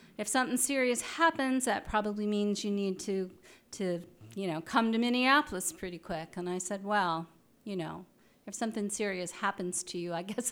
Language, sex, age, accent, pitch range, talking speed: English, female, 40-59, American, 185-245 Hz, 185 wpm